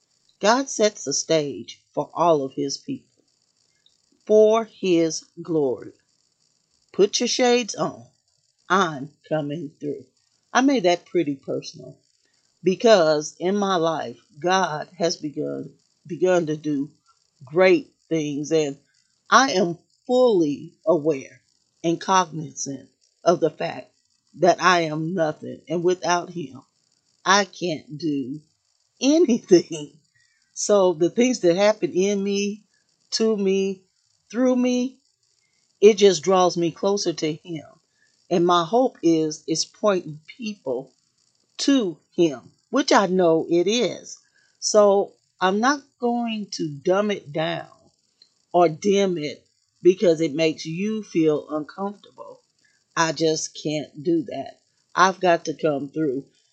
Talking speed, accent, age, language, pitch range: 125 wpm, American, 40-59, English, 155-205 Hz